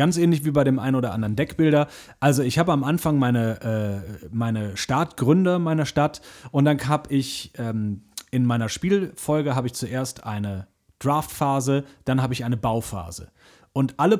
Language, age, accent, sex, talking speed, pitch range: German, 40-59, German, male, 170 wpm, 115-145 Hz